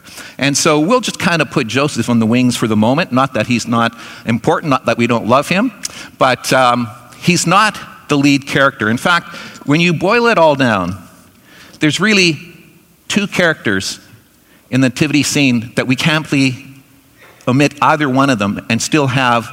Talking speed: 180 wpm